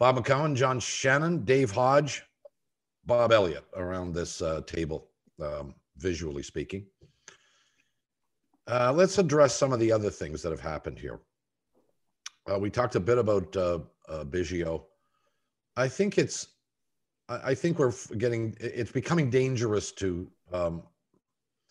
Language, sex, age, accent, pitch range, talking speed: English, male, 50-69, American, 85-120 Hz, 135 wpm